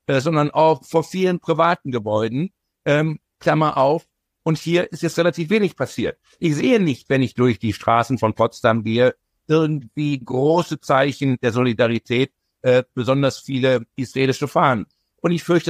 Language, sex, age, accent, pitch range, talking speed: German, male, 60-79, German, 120-155 Hz, 155 wpm